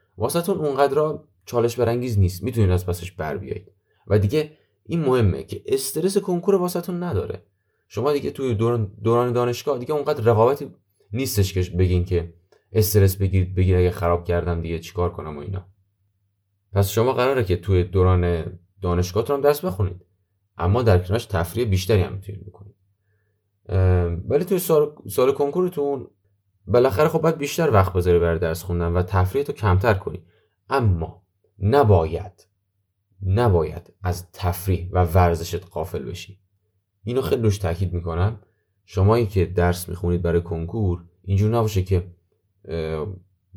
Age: 20-39